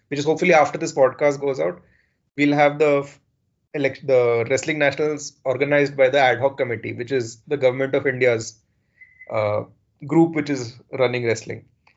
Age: 20-39